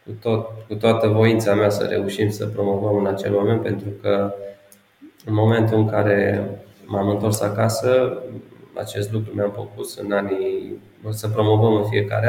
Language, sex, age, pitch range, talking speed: Romanian, male, 20-39, 100-115 Hz, 155 wpm